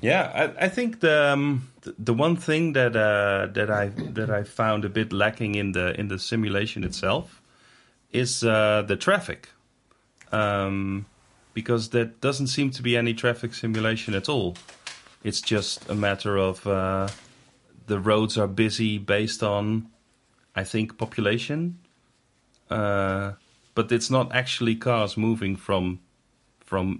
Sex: male